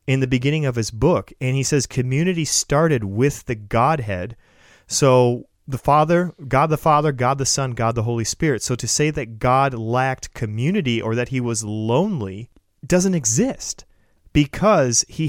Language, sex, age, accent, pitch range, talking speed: English, male, 30-49, American, 110-140 Hz, 170 wpm